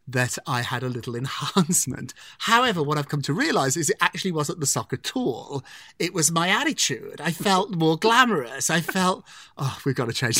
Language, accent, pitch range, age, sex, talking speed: English, British, 130-185 Hz, 30-49, male, 200 wpm